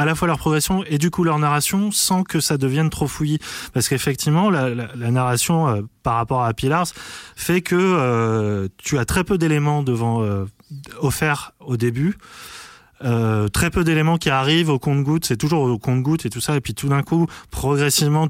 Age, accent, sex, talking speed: 20-39, French, male, 200 wpm